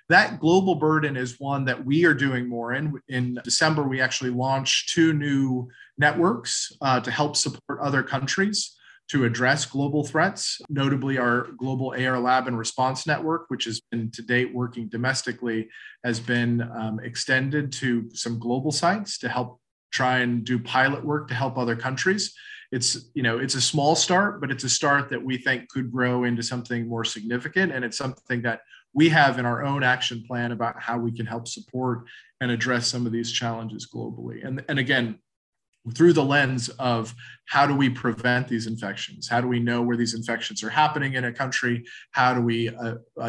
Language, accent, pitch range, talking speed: English, American, 120-135 Hz, 185 wpm